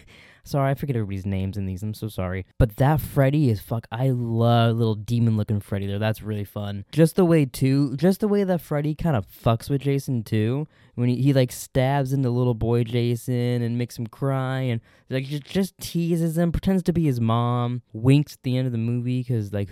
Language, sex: English, male